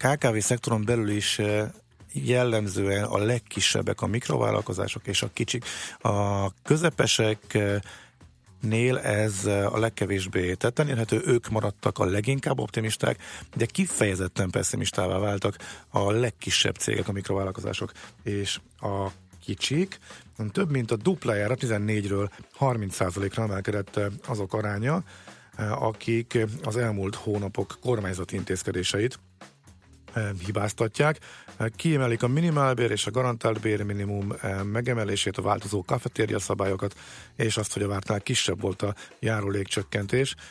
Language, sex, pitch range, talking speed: Hungarian, male, 100-120 Hz, 110 wpm